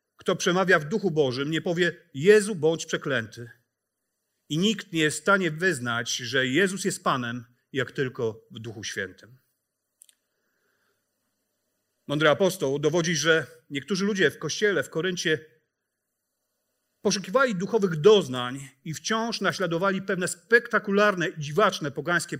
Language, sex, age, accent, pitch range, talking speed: Polish, male, 40-59, native, 135-195 Hz, 125 wpm